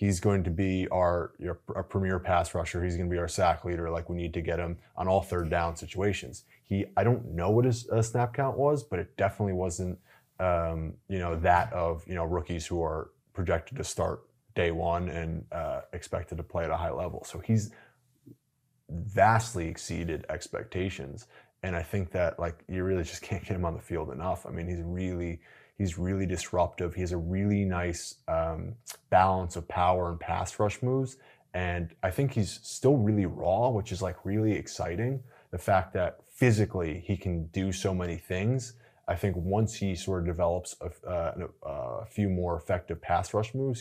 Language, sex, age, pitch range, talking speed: English, male, 20-39, 85-105 Hz, 195 wpm